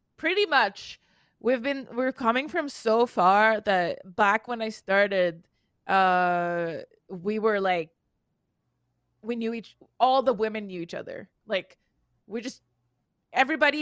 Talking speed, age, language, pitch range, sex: 135 wpm, 20-39, English, 180-220 Hz, female